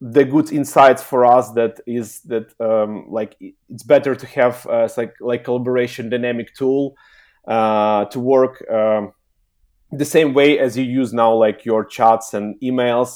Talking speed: 165 wpm